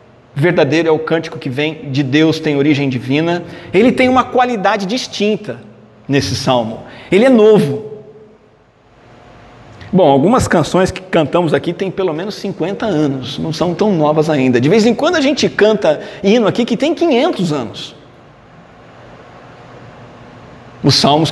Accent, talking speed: Brazilian, 145 wpm